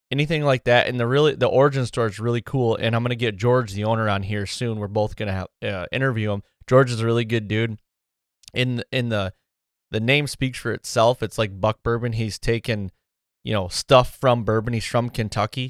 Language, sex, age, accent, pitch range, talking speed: English, male, 20-39, American, 100-120 Hz, 225 wpm